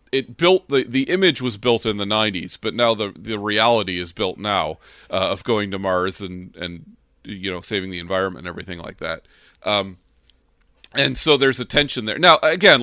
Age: 40-59